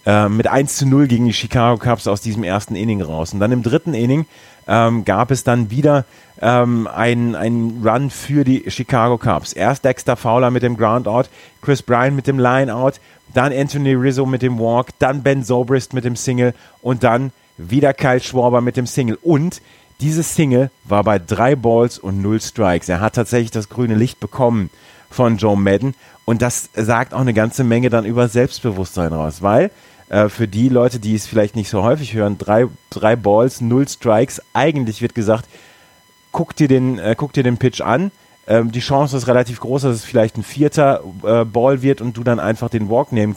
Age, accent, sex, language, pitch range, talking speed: 30-49, German, male, German, 110-130 Hz, 200 wpm